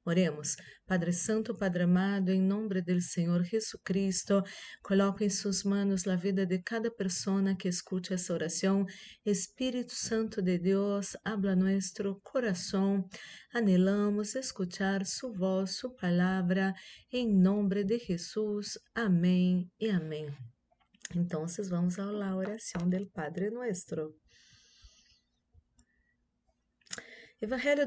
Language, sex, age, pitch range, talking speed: Spanish, female, 30-49, 180-220 Hz, 110 wpm